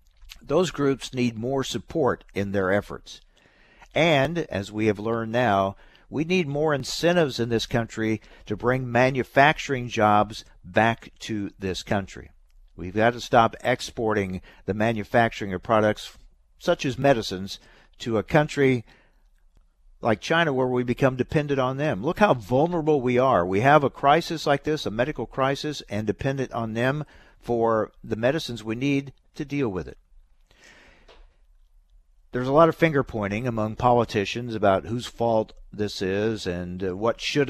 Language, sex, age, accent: English, male, 60-79, American